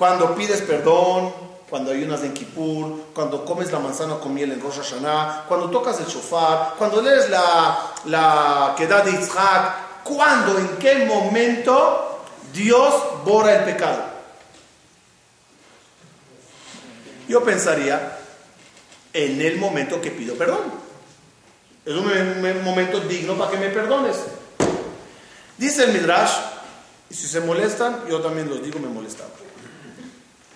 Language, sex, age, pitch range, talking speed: Spanish, male, 40-59, 160-240 Hz, 125 wpm